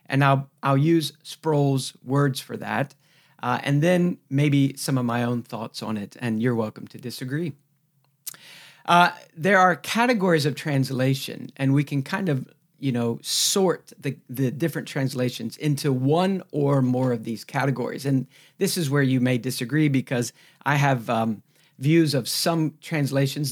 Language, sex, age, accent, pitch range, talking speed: English, male, 50-69, American, 130-160 Hz, 165 wpm